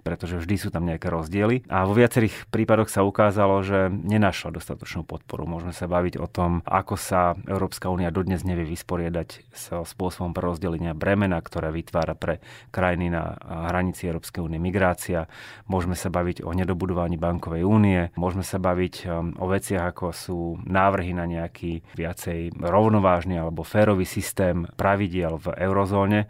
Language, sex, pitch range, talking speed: Slovak, male, 85-100 Hz, 155 wpm